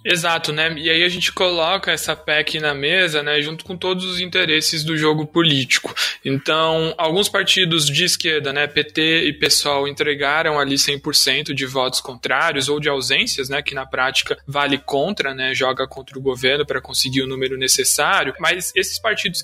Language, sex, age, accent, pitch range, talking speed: Portuguese, male, 20-39, Brazilian, 150-180 Hz, 175 wpm